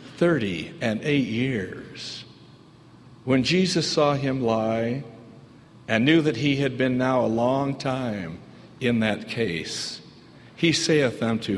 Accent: American